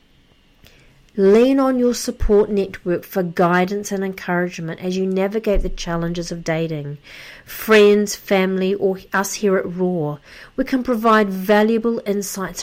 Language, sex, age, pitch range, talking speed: English, female, 40-59, 180-230 Hz, 135 wpm